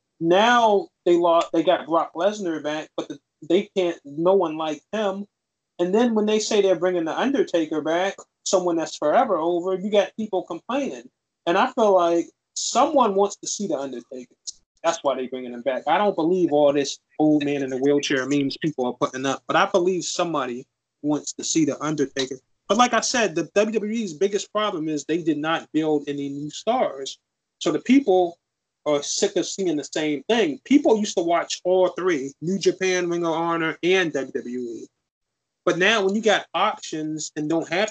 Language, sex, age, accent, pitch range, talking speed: English, male, 20-39, American, 145-195 Hz, 195 wpm